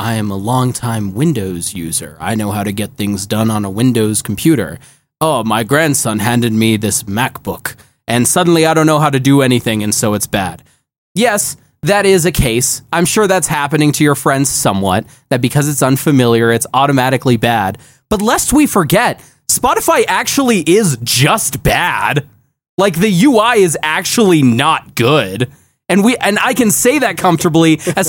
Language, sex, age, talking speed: English, male, 20-39, 175 wpm